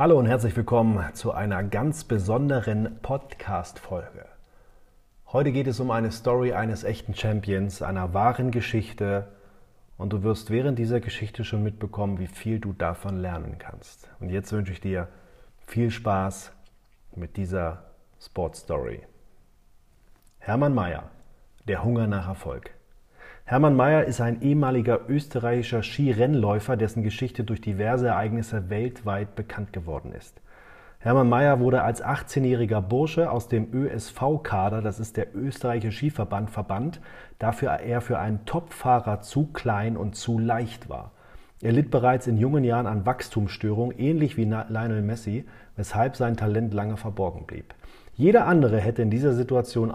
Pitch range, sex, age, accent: 105-125 Hz, male, 30-49, German